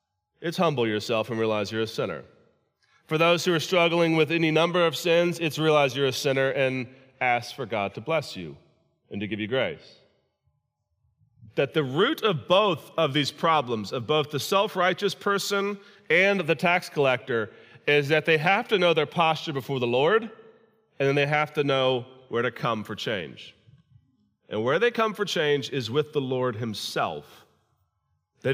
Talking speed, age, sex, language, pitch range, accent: 180 wpm, 30-49, male, English, 130-170 Hz, American